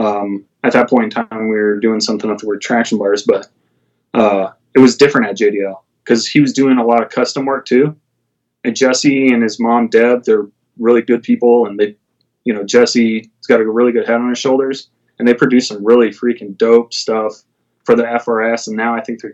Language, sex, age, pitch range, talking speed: English, male, 20-39, 110-130 Hz, 220 wpm